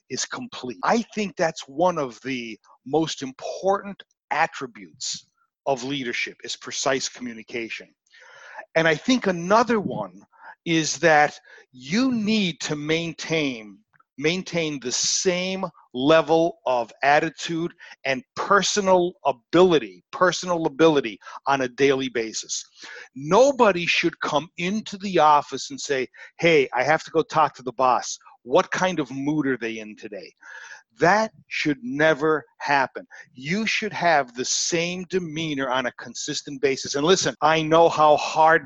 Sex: male